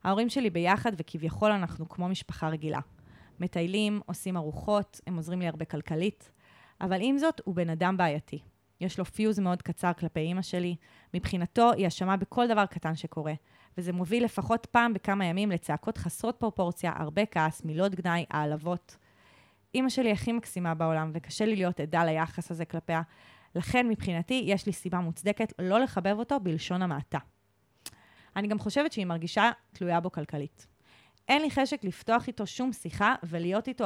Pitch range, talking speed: 165-220 Hz, 165 wpm